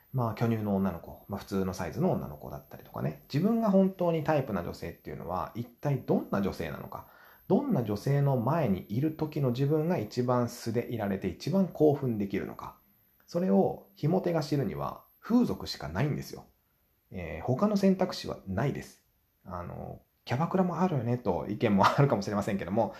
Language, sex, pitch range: Japanese, male, 100-165 Hz